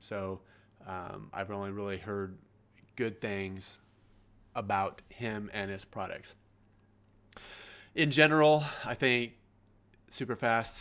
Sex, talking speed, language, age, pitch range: male, 100 wpm, English, 30-49, 100-120 Hz